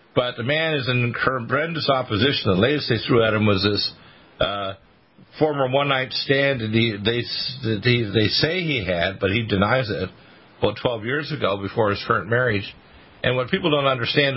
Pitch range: 110-135 Hz